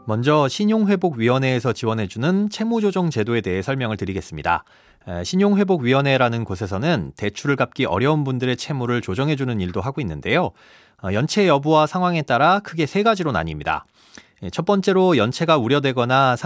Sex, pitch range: male, 115-175 Hz